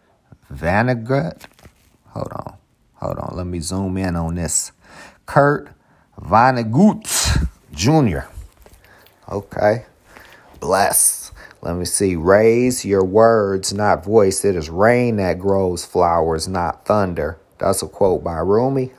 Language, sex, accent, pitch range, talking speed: English, male, American, 95-120 Hz, 115 wpm